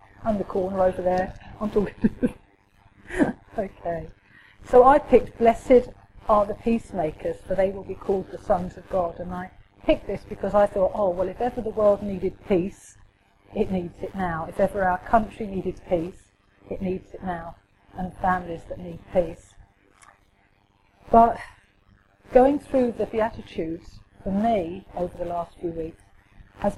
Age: 40-59